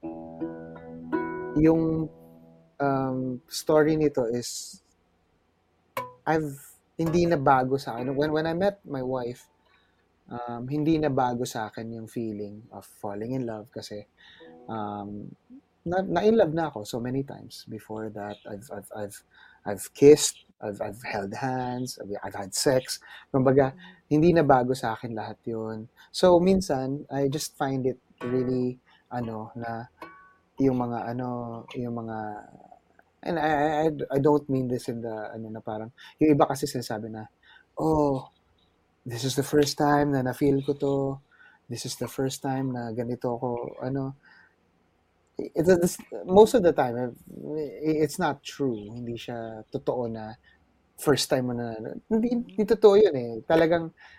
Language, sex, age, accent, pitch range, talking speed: Filipino, male, 20-39, native, 110-150 Hz, 145 wpm